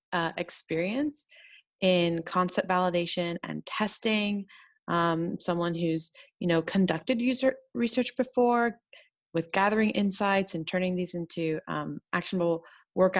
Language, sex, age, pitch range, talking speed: English, female, 30-49, 165-200 Hz, 120 wpm